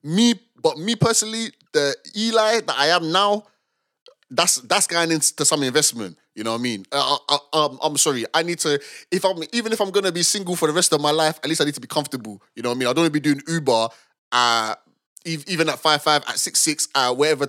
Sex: male